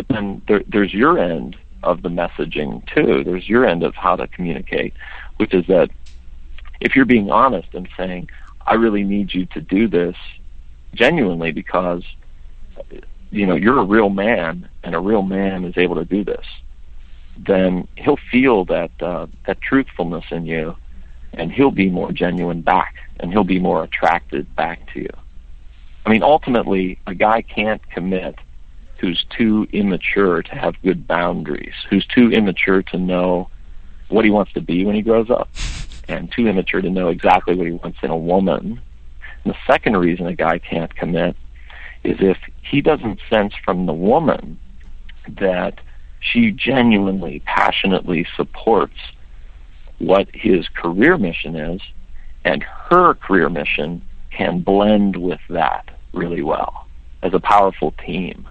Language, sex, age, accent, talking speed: English, male, 50-69, American, 155 wpm